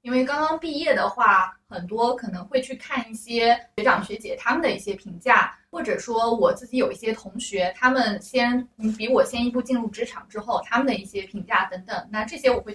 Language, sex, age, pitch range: Chinese, female, 20-39, 205-255 Hz